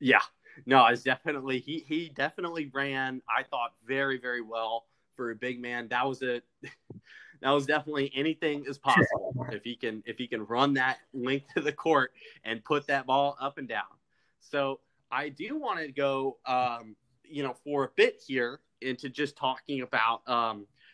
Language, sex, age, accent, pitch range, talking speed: English, male, 30-49, American, 120-140 Hz, 185 wpm